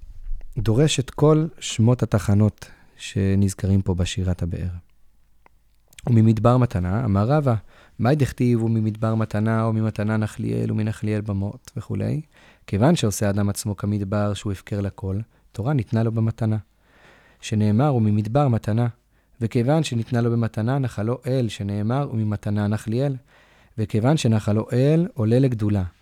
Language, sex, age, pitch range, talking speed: Hebrew, male, 30-49, 100-125 Hz, 120 wpm